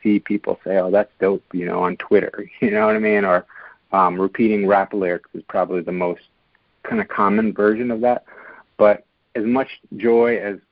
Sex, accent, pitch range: male, American, 95-115 Hz